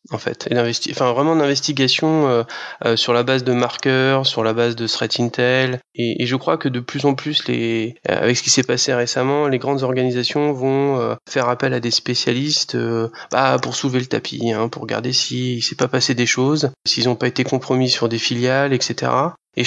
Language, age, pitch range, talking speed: French, 20-39, 120-140 Hz, 220 wpm